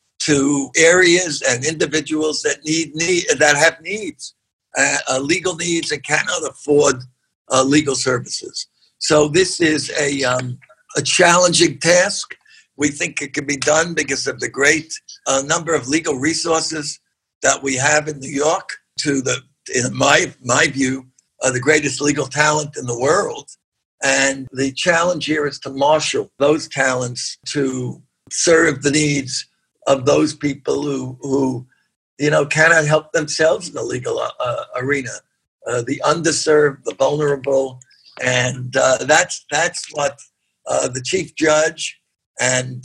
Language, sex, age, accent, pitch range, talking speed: English, male, 60-79, American, 135-155 Hz, 145 wpm